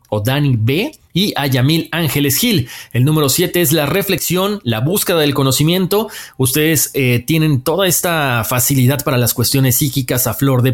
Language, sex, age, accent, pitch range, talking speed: Spanish, male, 40-59, Mexican, 125-165 Hz, 175 wpm